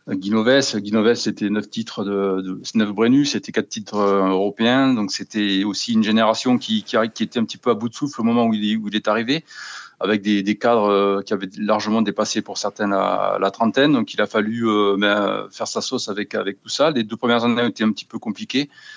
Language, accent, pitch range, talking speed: French, French, 105-120 Hz, 230 wpm